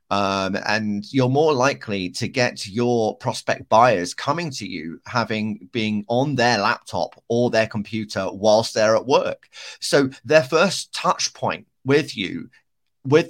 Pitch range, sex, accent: 105-130 Hz, male, British